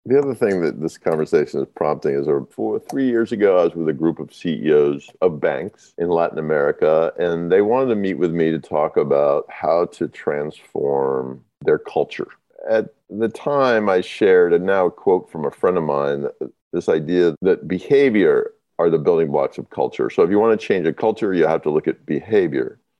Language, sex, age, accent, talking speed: English, male, 50-69, American, 205 wpm